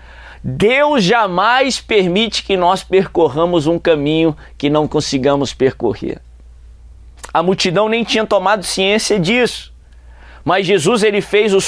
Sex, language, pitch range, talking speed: male, Portuguese, 160-245 Hz, 120 wpm